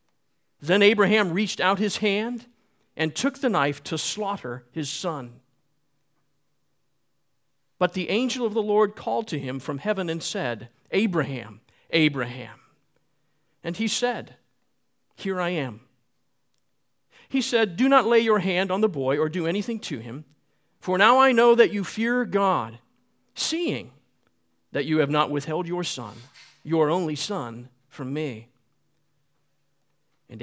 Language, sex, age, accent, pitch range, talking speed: English, male, 50-69, American, 140-200 Hz, 140 wpm